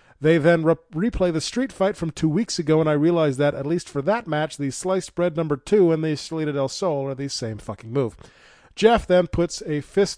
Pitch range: 135-175 Hz